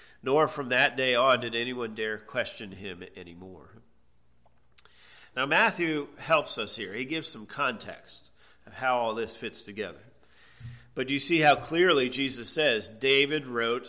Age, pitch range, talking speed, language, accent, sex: 40-59, 115-140 Hz, 150 wpm, English, American, male